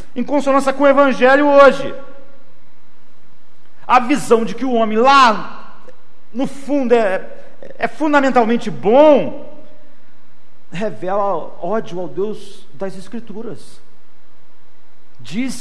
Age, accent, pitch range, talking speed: 50-69, Brazilian, 200-260 Hz, 100 wpm